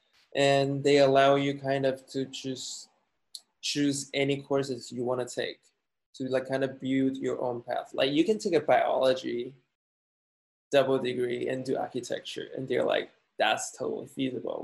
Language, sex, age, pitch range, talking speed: English, male, 20-39, 130-145 Hz, 165 wpm